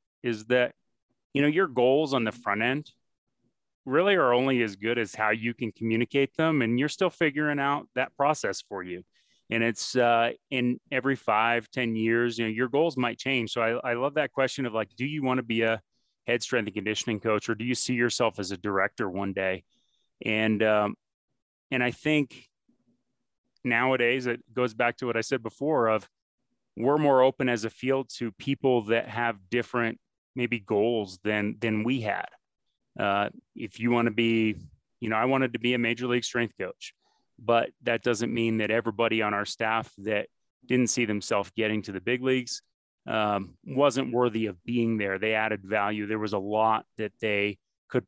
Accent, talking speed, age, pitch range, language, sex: American, 195 wpm, 30-49, 110-130 Hz, English, male